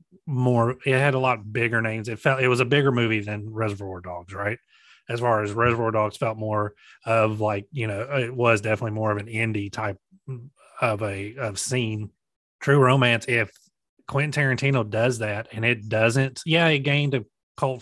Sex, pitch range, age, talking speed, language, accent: male, 110-130 Hz, 30-49, 190 wpm, English, American